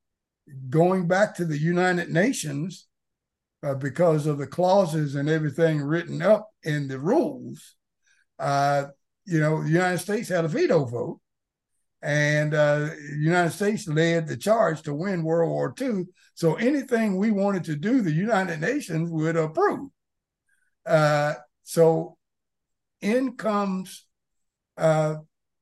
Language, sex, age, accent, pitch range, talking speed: English, male, 60-79, American, 155-210 Hz, 135 wpm